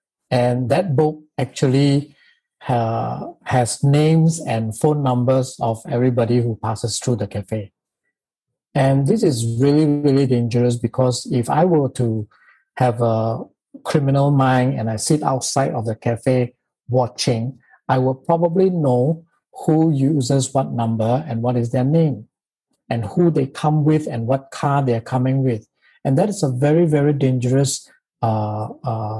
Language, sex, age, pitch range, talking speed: English, male, 50-69, 120-150 Hz, 150 wpm